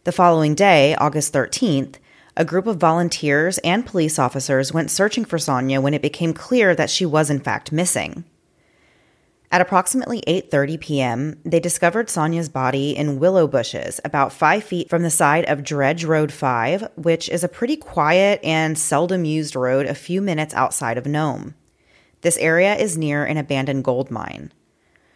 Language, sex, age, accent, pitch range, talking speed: English, female, 30-49, American, 140-175 Hz, 165 wpm